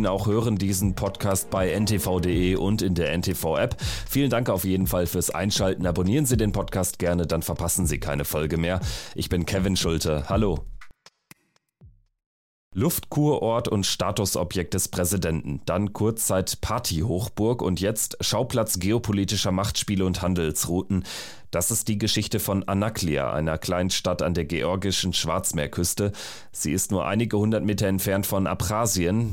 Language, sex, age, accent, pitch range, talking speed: German, male, 30-49, German, 90-105 Hz, 145 wpm